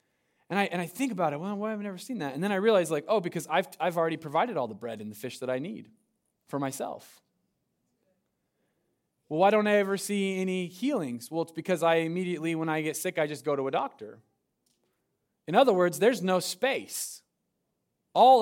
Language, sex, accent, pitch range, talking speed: English, male, American, 170-235 Hz, 215 wpm